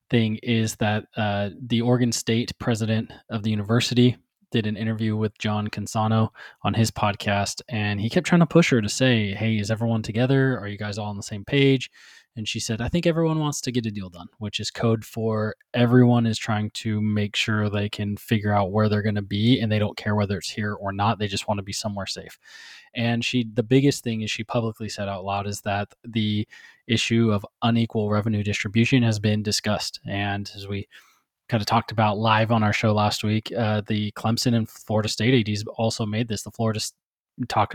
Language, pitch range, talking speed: English, 105-115 Hz, 220 wpm